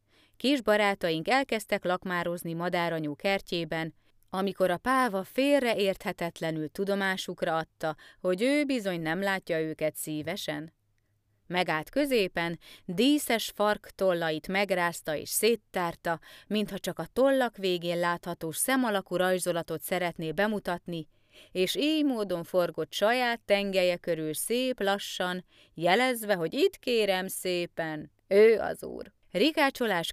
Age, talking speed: 30-49, 110 wpm